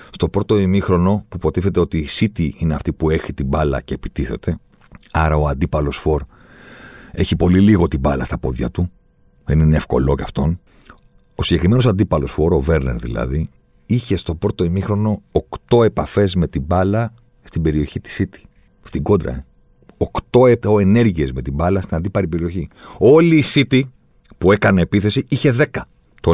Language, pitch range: Greek, 80-105 Hz